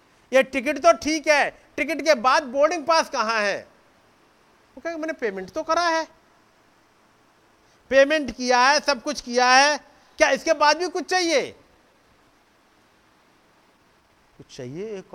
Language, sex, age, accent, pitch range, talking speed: Hindi, male, 50-69, native, 190-285 Hz, 130 wpm